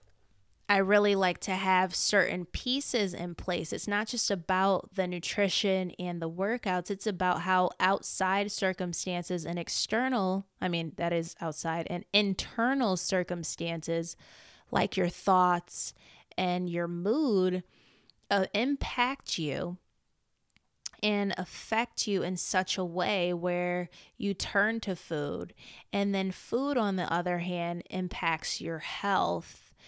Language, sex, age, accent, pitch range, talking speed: English, female, 20-39, American, 175-200 Hz, 130 wpm